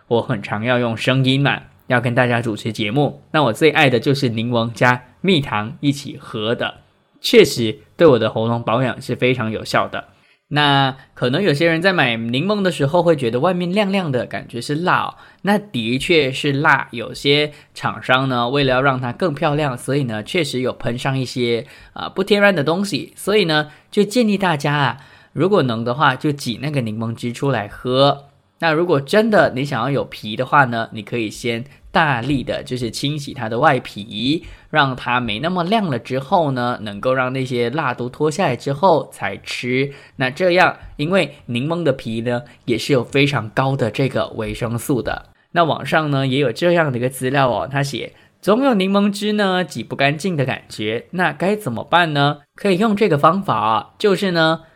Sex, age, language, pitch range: male, 20-39, English, 120-160 Hz